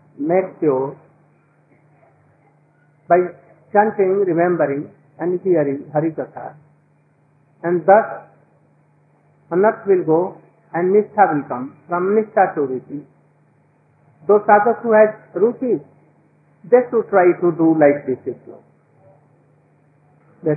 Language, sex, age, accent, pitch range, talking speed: Hindi, male, 50-69, native, 145-195 Hz, 105 wpm